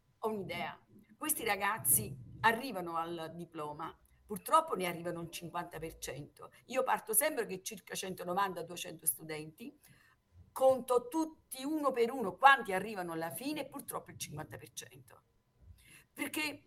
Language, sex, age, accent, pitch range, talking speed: Italian, female, 50-69, native, 170-235 Hz, 115 wpm